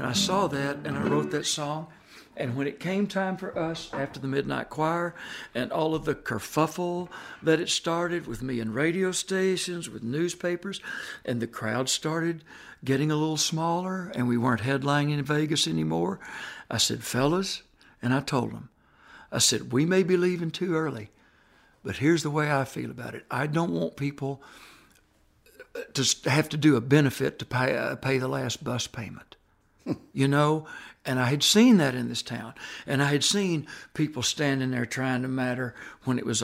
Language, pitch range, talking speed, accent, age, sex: English, 125-165 Hz, 185 wpm, American, 60-79, male